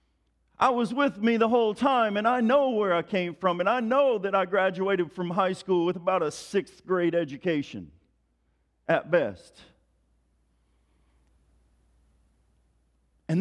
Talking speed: 145 wpm